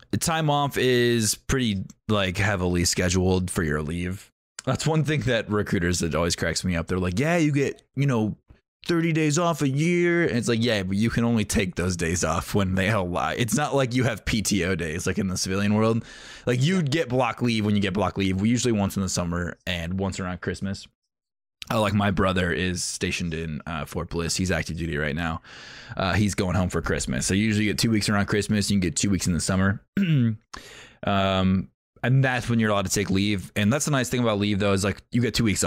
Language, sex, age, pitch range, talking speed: English, male, 20-39, 90-120 Hz, 235 wpm